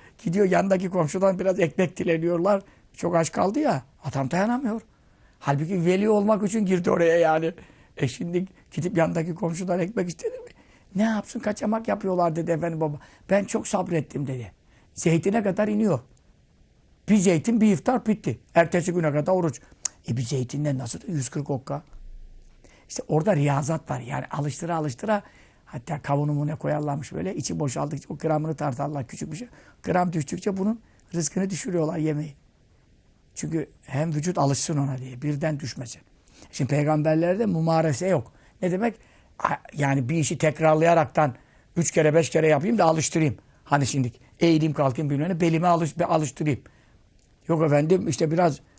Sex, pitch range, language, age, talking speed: male, 145-180 Hz, Turkish, 60-79, 145 wpm